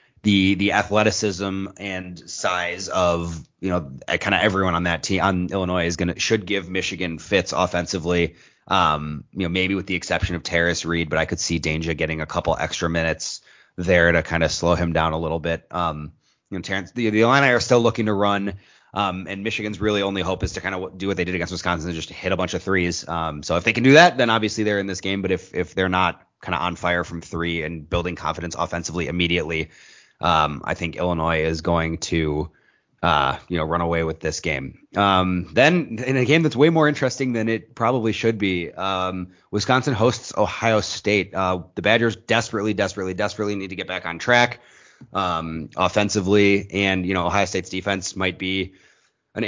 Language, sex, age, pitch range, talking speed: English, male, 30-49, 85-105 Hz, 210 wpm